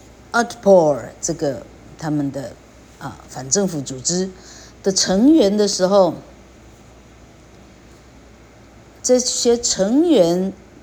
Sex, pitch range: female, 150-205 Hz